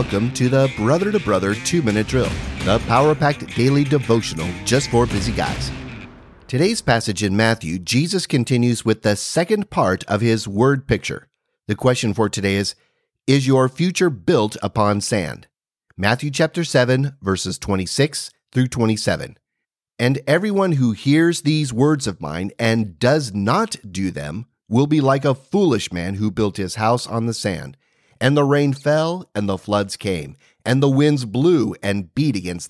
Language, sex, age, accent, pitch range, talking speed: English, male, 30-49, American, 105-140 Hz, 165 wpm